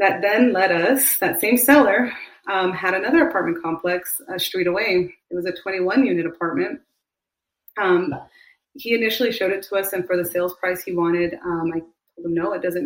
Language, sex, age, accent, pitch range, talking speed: English, female, 30-49, American, 175-205 Hz, 195 wpm